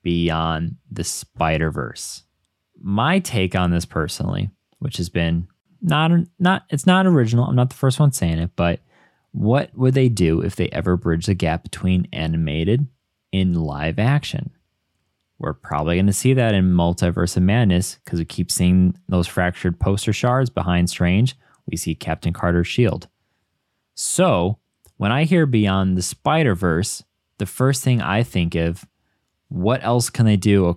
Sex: male